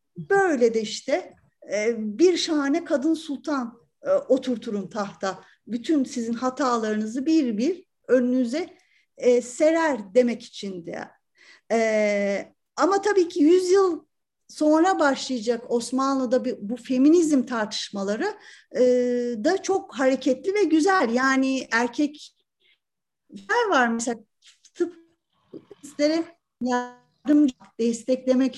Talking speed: 85 wpm